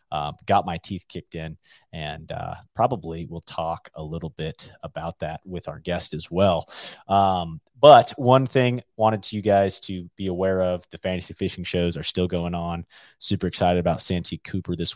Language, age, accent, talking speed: English, 30-49, American, 195 wpm